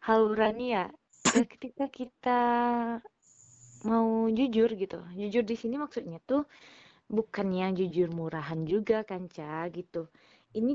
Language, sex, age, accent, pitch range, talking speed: Indonesian, female, 20-39, native, 190-235 Hz, 110 wpm